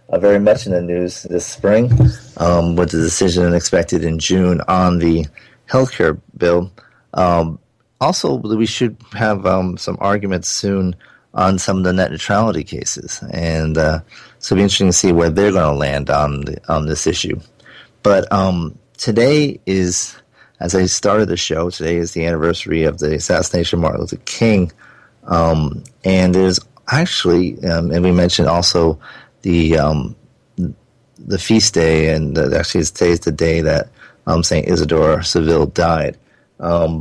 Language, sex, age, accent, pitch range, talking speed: English, male, 30-49, American, 80-95 Hz, 165 wpm